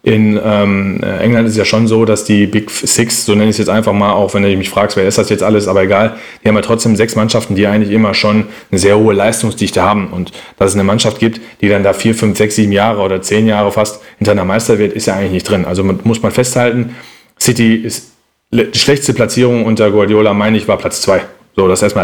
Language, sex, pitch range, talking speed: German, male, 105-120 Hz, 255 wpm